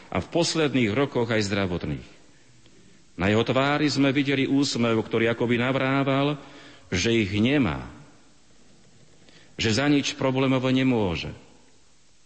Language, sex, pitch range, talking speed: Slovak, male, 100-125 Hz, 115 wpm